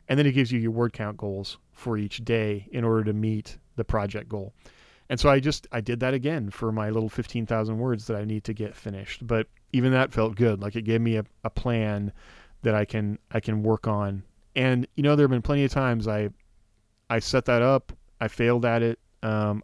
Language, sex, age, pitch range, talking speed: English, male, 30-49, 105-125 Hz, 230 wpm